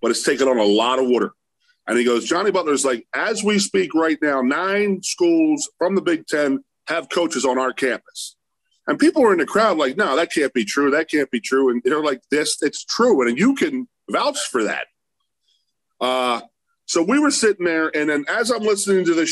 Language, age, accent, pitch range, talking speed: English, 40-59, American, 130-220 Hz, 220 wpm